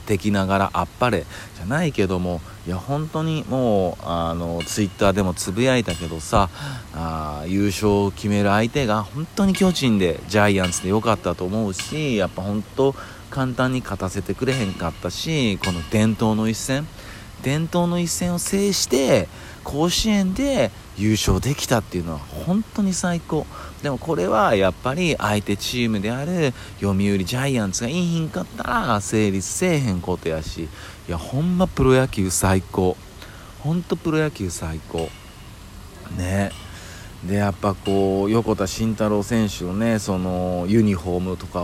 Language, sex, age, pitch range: Japanese, male, 40-59, 95-130 Hz